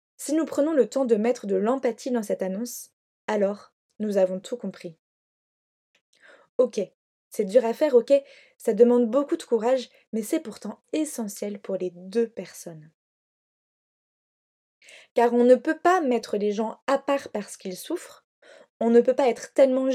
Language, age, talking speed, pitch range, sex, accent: French, 20-39, 165 wpm, 210-270 Hz, female, French